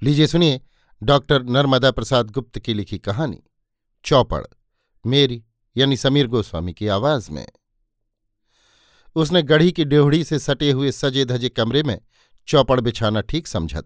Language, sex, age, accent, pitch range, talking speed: Hindi, male, 50-69, native, 110-140 Hz, 140 wpm